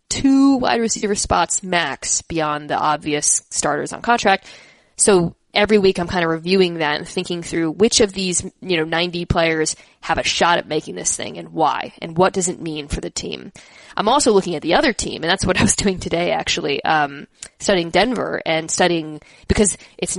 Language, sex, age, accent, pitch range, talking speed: English, female, 20-39, American, 165-195 Hz, 200 wpm